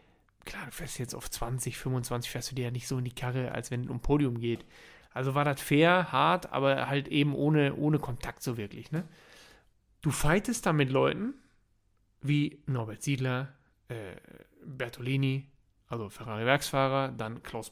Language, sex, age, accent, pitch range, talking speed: German, male, 30-49, German, 130-165 Hz, 170 wpm